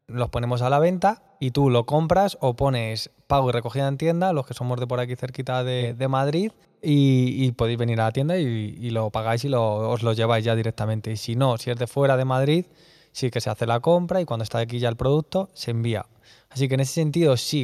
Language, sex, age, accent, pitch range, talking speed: Spanish, male, 20-39, Spanish, 120-145 Hz, 250 wpm